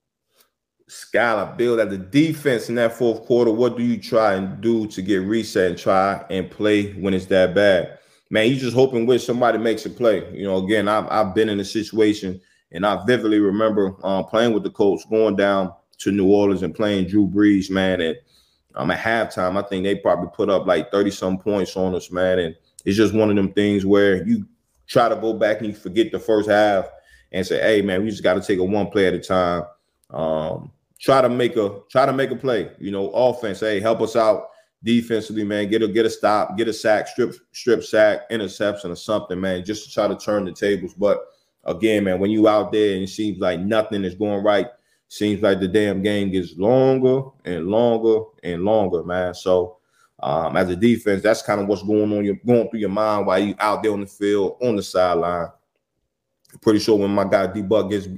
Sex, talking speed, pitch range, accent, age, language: male, 220 wpm, 95-110 Hz, American, 20-39, English